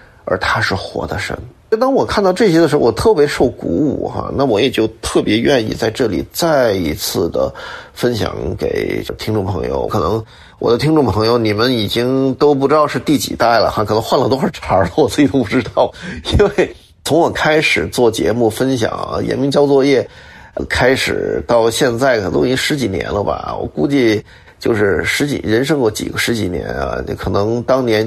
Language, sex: Chinese, male